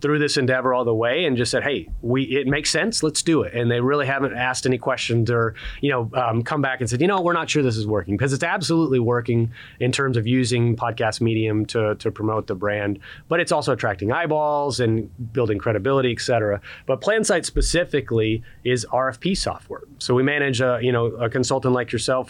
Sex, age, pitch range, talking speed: male, 30-49, 115-140 Hz, 215 wpm